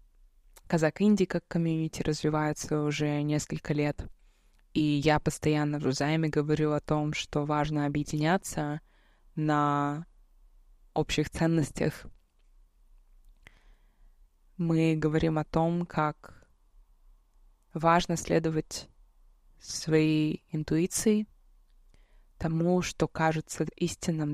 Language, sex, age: Russian, female, 20-39